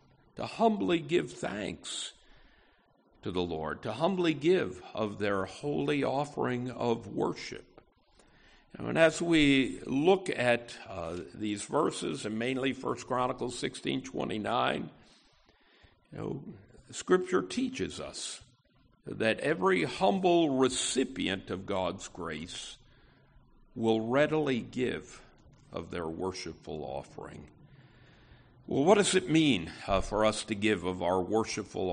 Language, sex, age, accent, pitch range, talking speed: English, male, 60-79, American, 110-150 Hz, 120 wpm